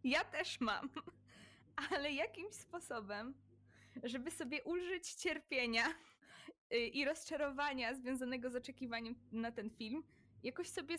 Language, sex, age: Polish, female, 20-39